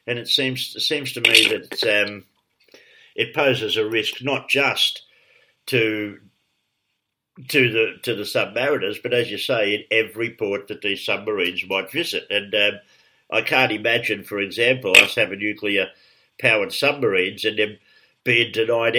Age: 60-79